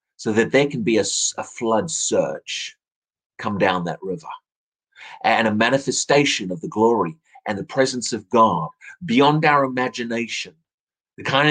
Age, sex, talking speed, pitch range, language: 30-49, male, 150 wpm, 125-195 Hz, English